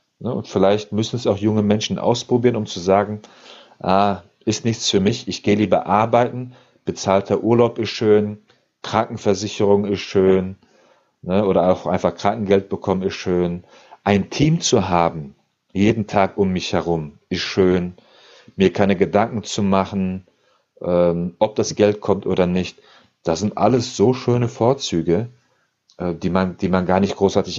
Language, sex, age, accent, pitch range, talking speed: German, male, 40-59, German, 95-120 Hz, 150 wpm